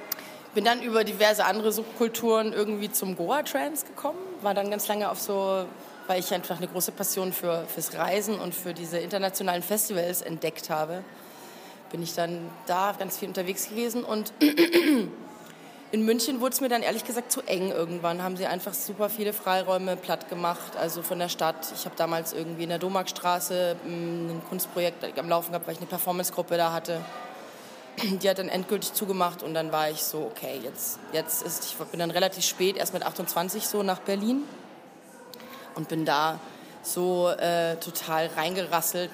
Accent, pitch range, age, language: German, 170-210 Hz, 20-39, English